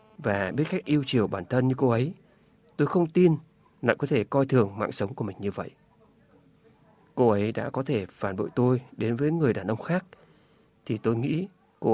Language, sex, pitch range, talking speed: Vietnamese, male, 110-150 Hz, 210 wpm